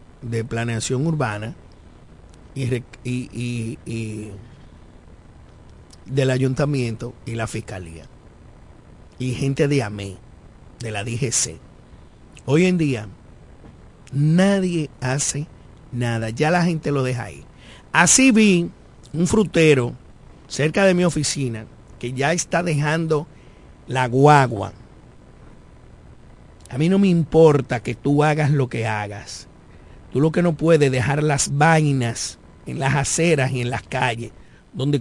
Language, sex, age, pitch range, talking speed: Spanish, male, 50-69, 115-170 Hz, 125 wpm